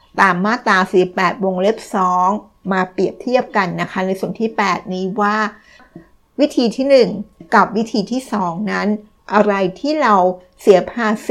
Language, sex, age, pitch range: Thai, female, 60-79, 190-220 Hz